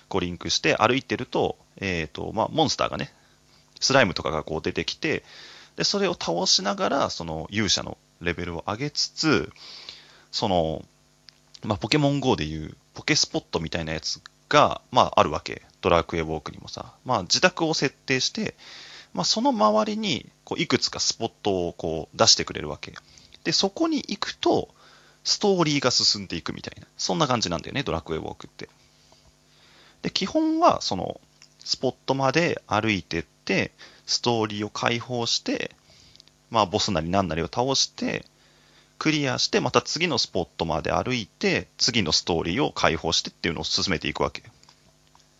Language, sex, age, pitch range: Japanese, male, 30-49, 85-130 Hz